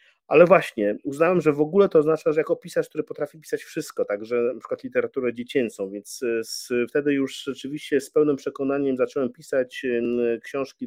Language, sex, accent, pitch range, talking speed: Polish, male, native, 120-145 Hz, 170 wpm